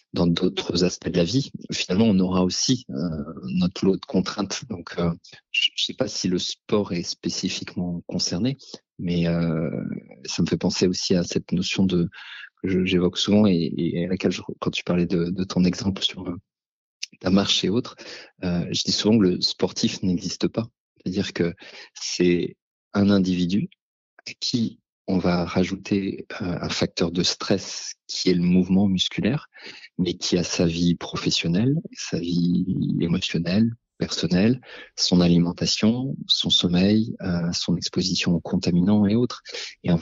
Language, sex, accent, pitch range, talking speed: French, male, French, 85-100 Hz, 165 wpm